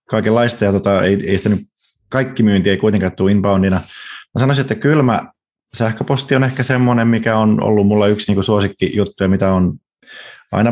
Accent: native